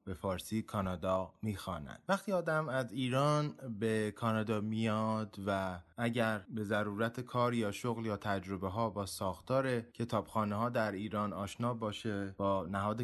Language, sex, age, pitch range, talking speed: Persian, male, 20-39, 100-125 Hz, 145 wpm